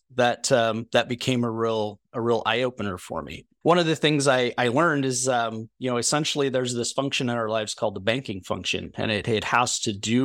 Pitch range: 110-130 Hz